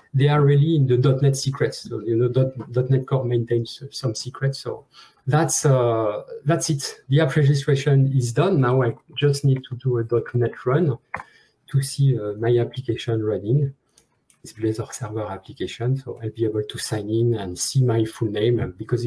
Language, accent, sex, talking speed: English, French, male, 185 wpm